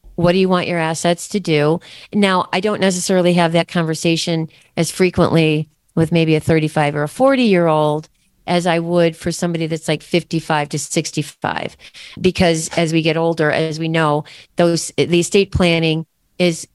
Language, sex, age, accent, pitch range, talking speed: English, female, 40-59, American, 155-180 Hz, 170 wpm